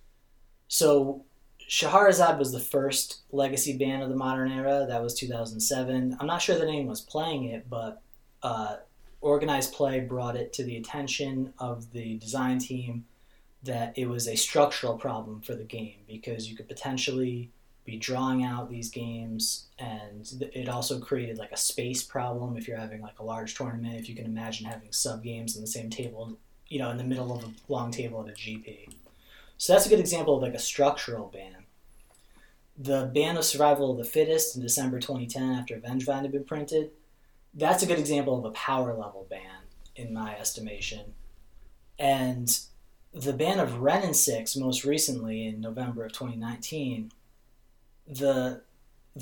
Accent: American